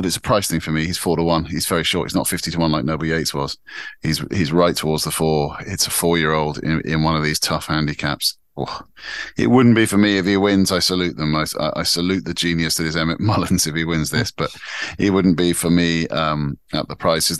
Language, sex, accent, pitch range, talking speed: English, male, British, 75-90 Hz, 265 wpm